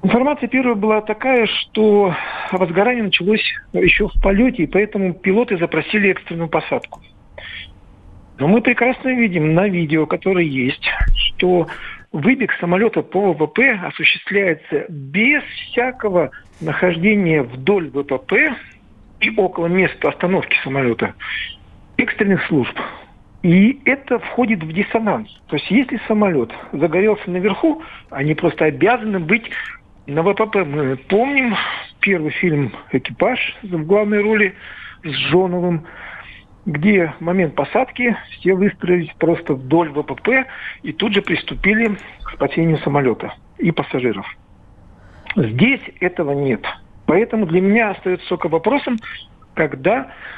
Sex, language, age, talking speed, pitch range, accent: male, Russian, 50-69, 115 wpm, 155-215 Hz, native